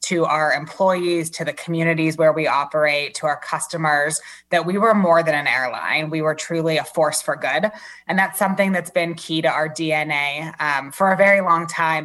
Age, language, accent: 20-39, English, American